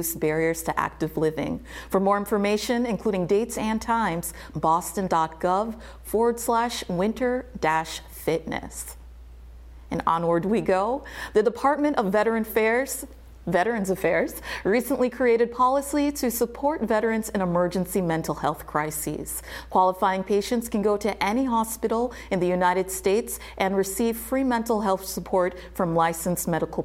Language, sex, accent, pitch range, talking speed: English, female, American, 170-225 Hz, 130 wpm